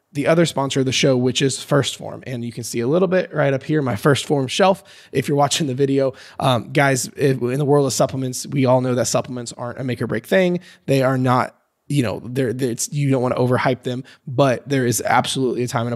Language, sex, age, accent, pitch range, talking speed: English, male, 20-39, American, 120-140 Hz, 250 wpm